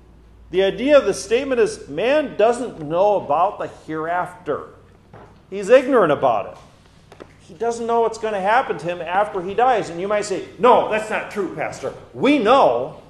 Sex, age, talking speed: male, 50-69, 180 wpm